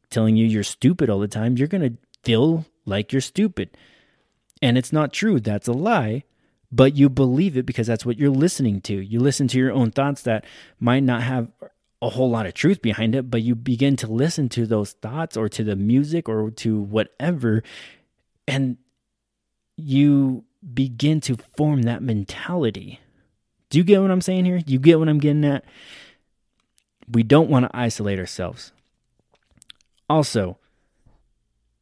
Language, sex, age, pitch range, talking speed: English, male, 20-39, 105-135 Hz, 170 wpm